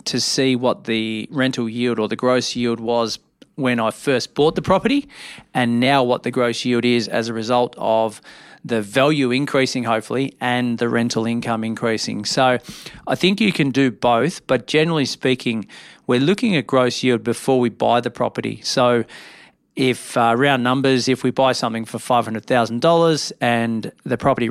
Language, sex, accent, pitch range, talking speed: English, male, Australian, 115-135 Hz, 175 wpm